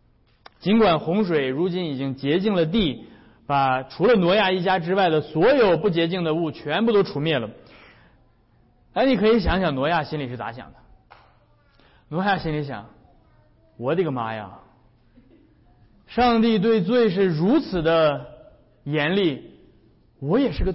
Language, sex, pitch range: Chinese, male, 130-220 Hz